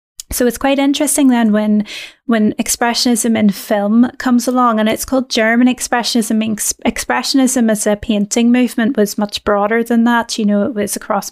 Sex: female